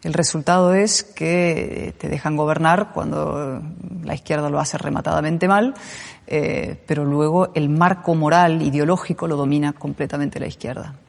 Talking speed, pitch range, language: 140 wpm, 145-165 Hz, Spanish